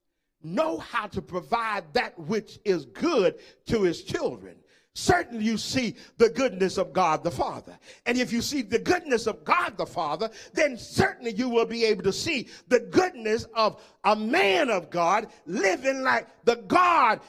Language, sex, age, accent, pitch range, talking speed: English, male, 50-69, American, 210-295 Hz, 170 wpm